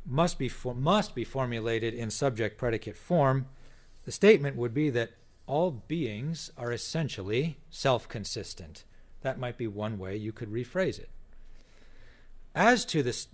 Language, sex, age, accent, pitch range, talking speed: English, male, 40-59, American, 110-150 Hz, 145 wpm